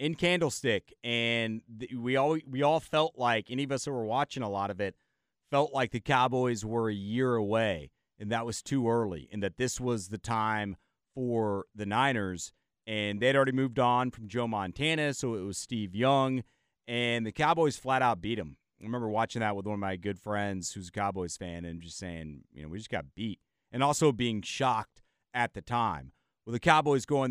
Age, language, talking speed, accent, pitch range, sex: 30-49, English, 210 wpm, American, 105-130 Hz, male